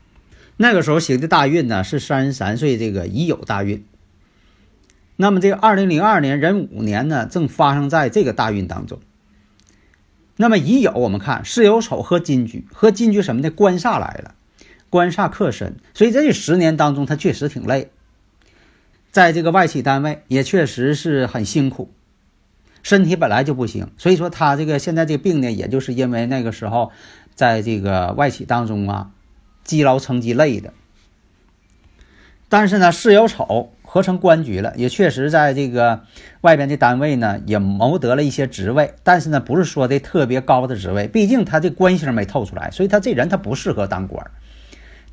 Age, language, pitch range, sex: 50-69, Chinese, 100-170 Hz, male